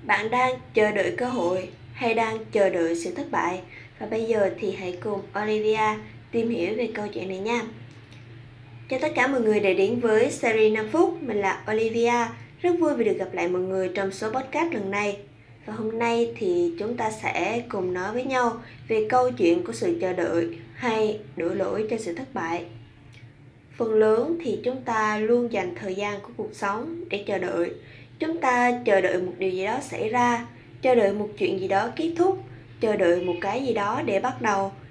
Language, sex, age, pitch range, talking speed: Vietnamese, female, 20-39, 180-235 Hz, 210 wpm